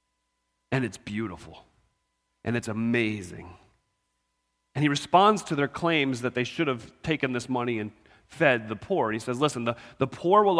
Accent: American